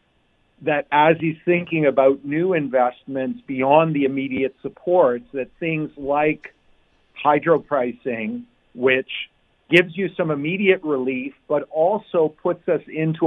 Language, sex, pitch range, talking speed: English, male, 130-155 Hz, 120 wpm